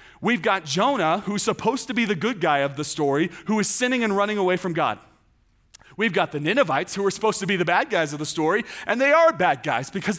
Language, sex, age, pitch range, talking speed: English, male, 30-49, 165-230 Hz, 245 wpm